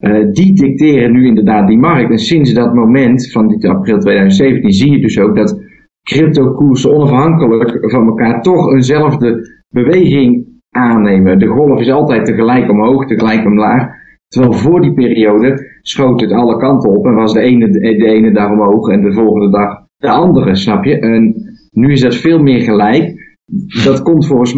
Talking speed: 175 wpm